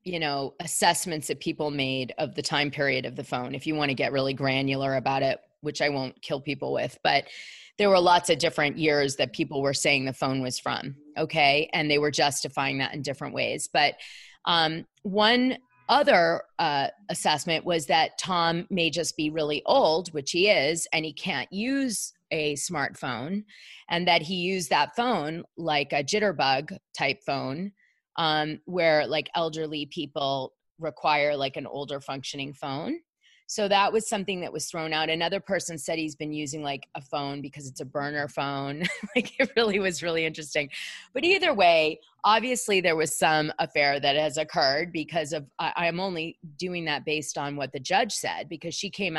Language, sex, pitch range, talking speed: English, female, 145-175 Hz, 185 wpm